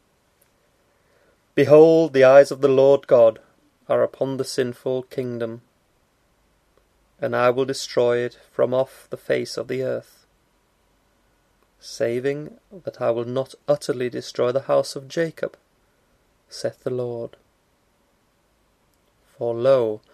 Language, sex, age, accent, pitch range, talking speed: English, male, 30-49, British, 120-145 Hz, 120 wpm